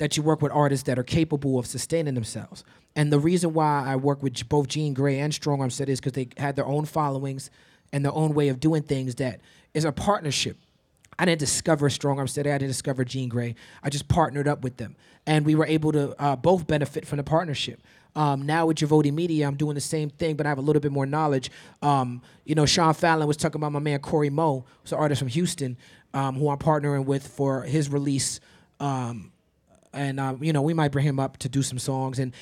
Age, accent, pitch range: 30-49, American, 135-160 Hz